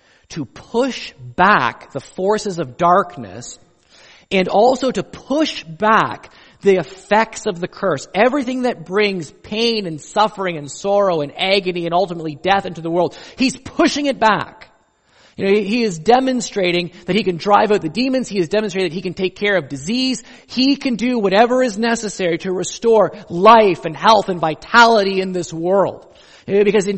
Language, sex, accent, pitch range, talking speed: English, male, American, 155-220 Hz, 170 wpm